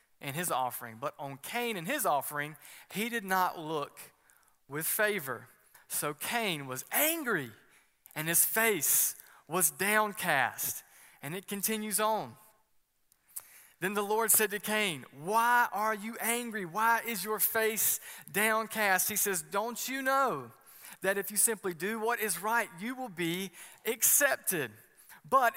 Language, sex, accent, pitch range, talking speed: English, male, American, 175-225 Hz, 145 wpm